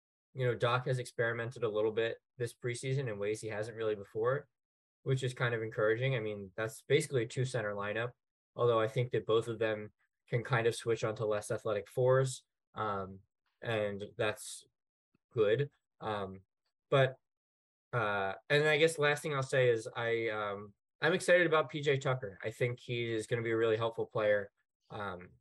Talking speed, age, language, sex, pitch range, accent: 180 wpm, 20-39, English, male, 110-140 Hz, American